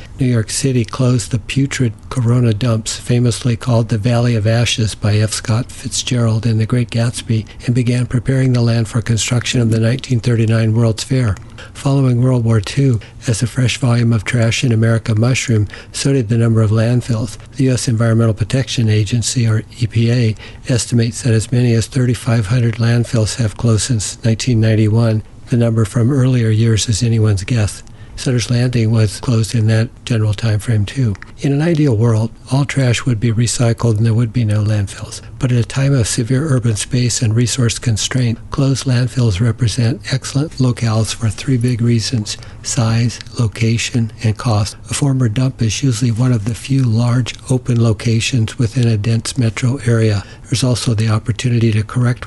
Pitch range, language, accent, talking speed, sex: 110-125 Hz, English, American, 175 wpm, male